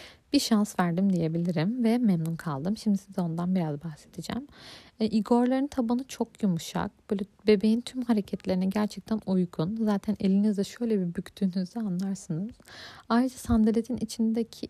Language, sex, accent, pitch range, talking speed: Turkish, female, native, 190-230 Hz, 130 wpm